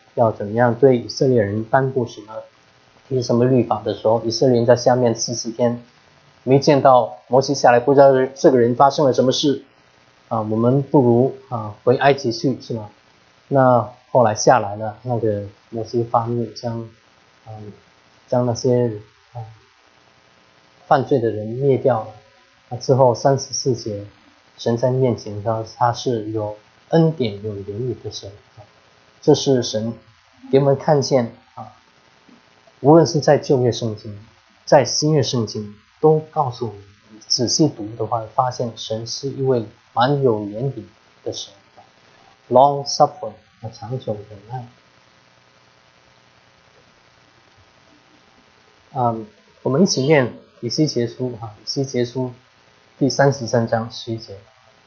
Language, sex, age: English, male, 20-39